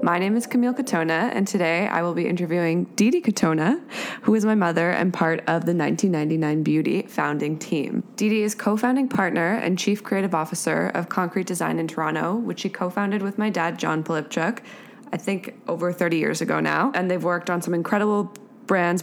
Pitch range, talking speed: 160-205 Hz, 190 wpm